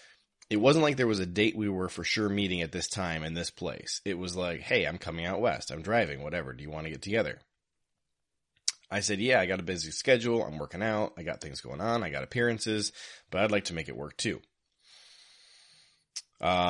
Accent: American